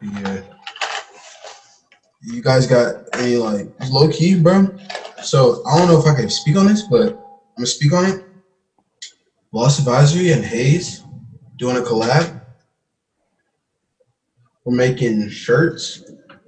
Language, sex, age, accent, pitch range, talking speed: English, male, 20-39, American, 115-165 Hz, 125 wpm